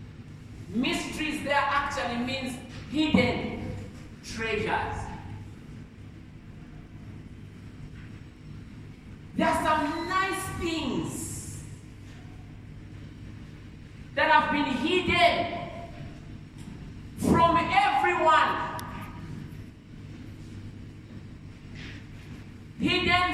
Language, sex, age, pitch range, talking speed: English, male, 50-69, 240-325 Hz, 45 wpm